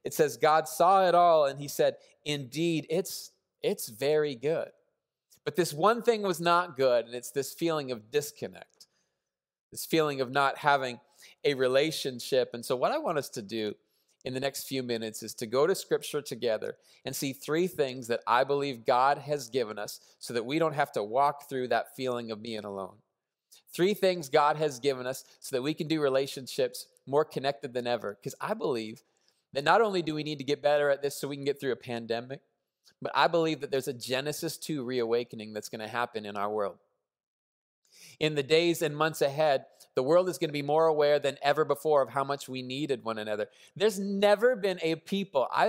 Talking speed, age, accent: 210 wpm, 30-49, American